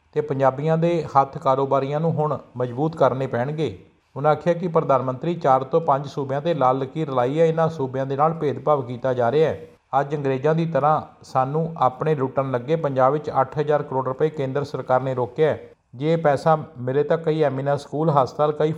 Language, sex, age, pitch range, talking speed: Punjabi, male, 50-69, 130-155 Hz, 190 wpm